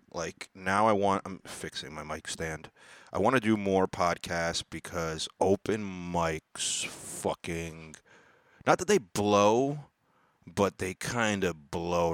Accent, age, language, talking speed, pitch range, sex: American, 30-49, English, 140 wpm, 85-100 Hz, male